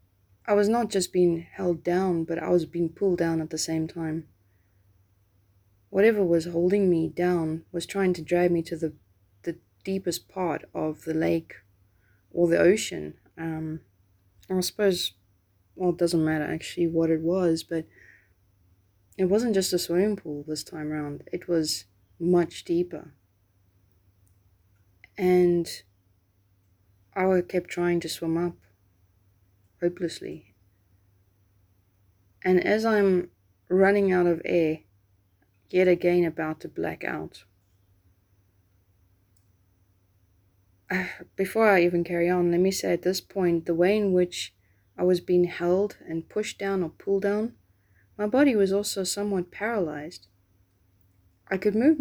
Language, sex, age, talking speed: English, female, 20-39, 135 wpm